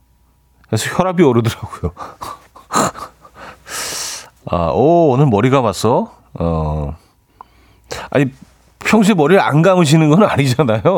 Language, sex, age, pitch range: Korean, male, 40-59, 95-150 Hz